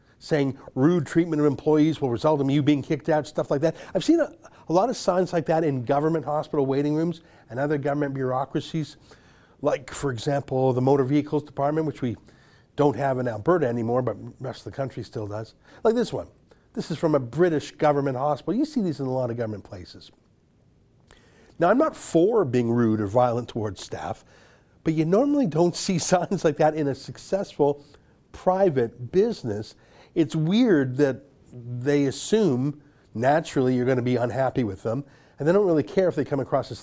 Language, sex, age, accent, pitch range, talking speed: English, male, 50-69, American, 120-160 Hz, 195 wpm